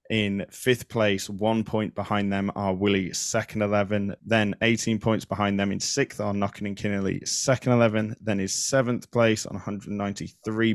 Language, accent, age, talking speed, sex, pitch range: English, British, 20-39, 165 wpm, male, 100-115 Hz